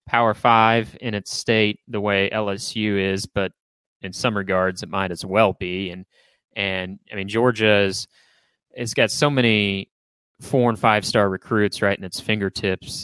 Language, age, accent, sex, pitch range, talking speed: English, 20-39, American, male, 100-120 Hz, 165 wpm